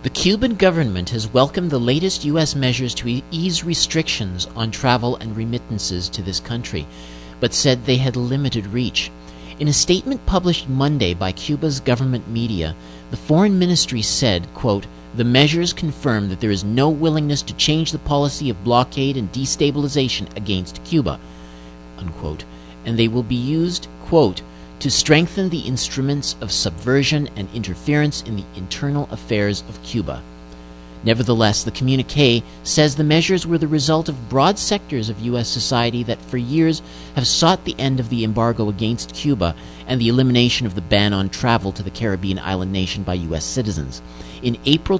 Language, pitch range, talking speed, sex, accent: English, 95-145 Hz, 160 wpm, male, American